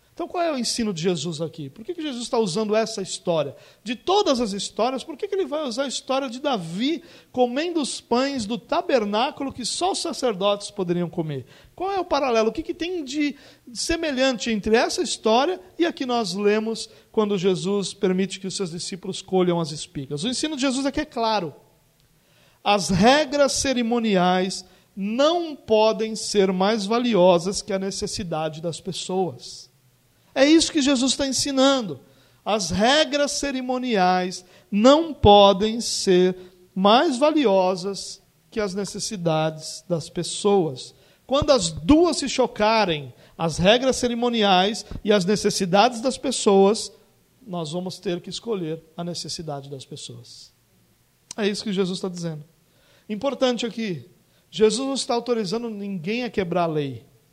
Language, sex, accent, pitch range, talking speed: Portuguese, male, Brazilian, 180-260 Hz, 155 wpm